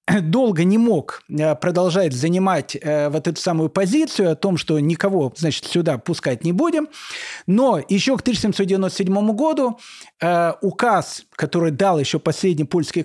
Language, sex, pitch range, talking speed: Russian, male, 155-215 Hz, 135 wpm